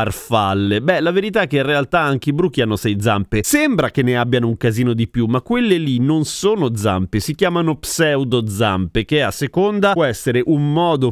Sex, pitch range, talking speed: male, 120-170 Hz, 205 wpm